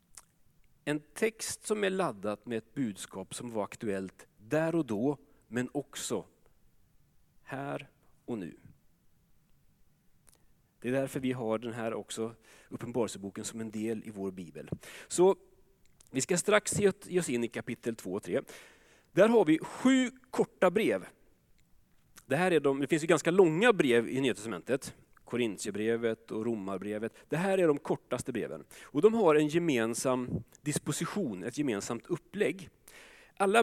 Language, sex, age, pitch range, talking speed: Swedish, male, 40-59, 115-180 Hz, 150 wpm